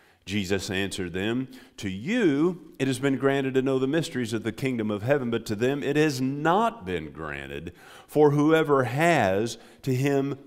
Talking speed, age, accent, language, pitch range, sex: 180 wpm, 50-69, American, English, 95-145 Hz, male